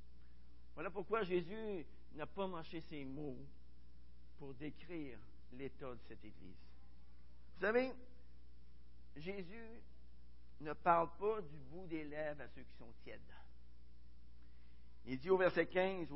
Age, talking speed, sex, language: 60-79, 125 wpm, male, French